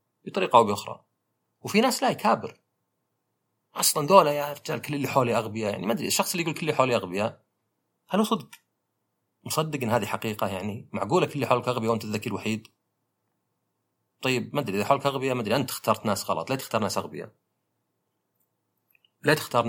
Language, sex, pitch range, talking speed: Arabic, male, 110-140 Hz, 180 wpm